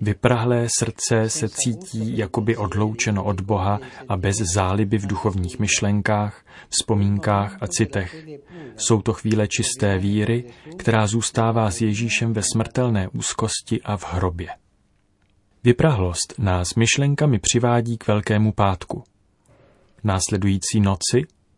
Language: Czech